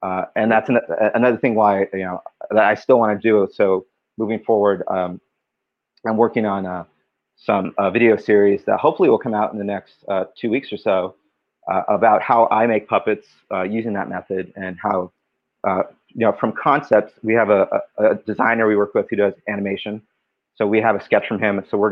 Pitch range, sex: 100-120 Hz, male